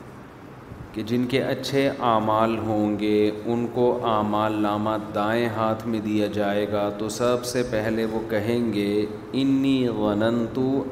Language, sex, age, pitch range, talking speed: Urdu, male, 30-49, 105-135 Hz, 145 wpm